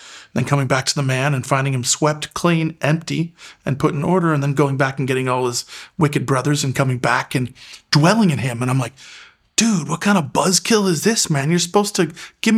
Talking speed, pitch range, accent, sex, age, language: 230 wpm, 130-160 Hz, American, male, 40-59, English